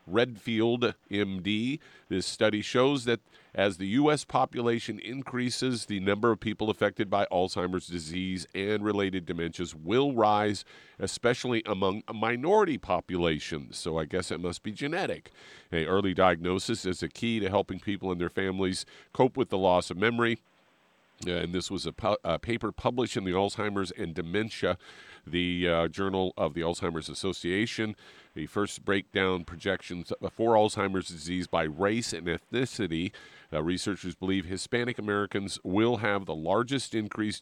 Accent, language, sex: American, English, male